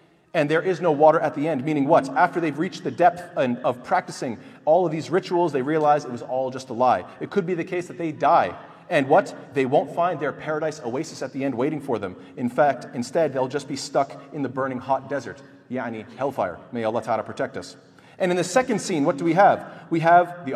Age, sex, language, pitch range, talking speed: 30-49, male, English, 140-190 Hz, 240 wpm